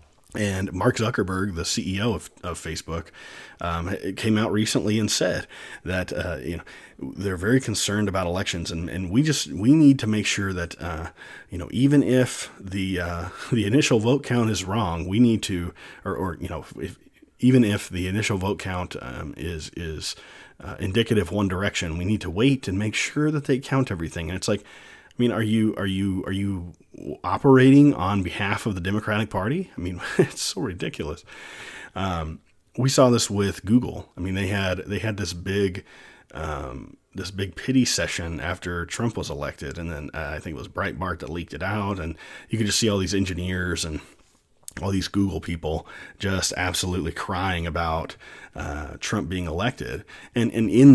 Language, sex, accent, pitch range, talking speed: English, male, American, 85-110 Hz, 190 wpm